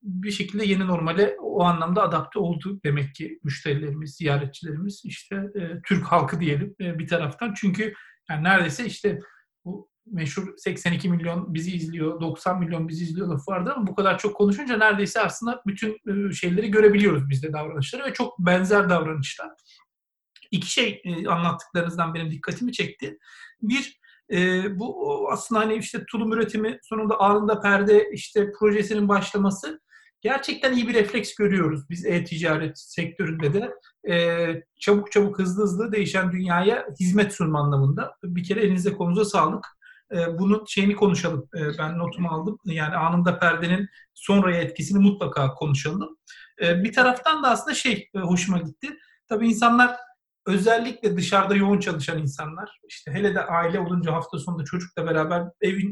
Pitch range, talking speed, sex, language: 170-210 Hz, 150 wpm, male, Turkish